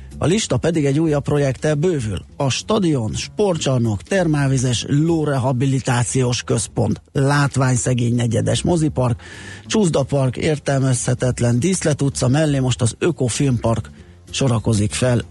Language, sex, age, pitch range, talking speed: Hungarian, male, 30-49, 110-135 Hz, 105 wpm